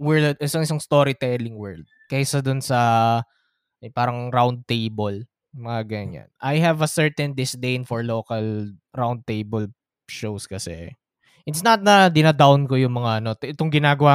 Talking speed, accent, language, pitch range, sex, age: 155 wpm, native, Filipino, 120-165 Hz, male, 20-39